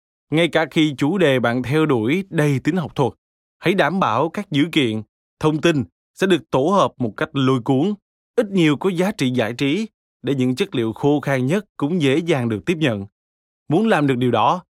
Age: 20-39